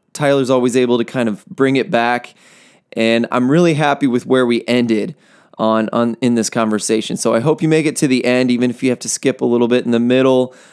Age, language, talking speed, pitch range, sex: 20-39, English, 240 wpm, 115-140 Hz, male